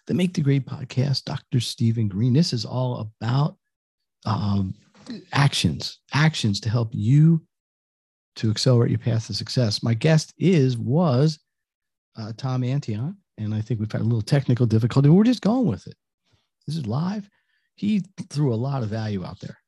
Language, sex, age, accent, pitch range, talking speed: English, male, 50-69, American, 110-140 Hz, 175 wpm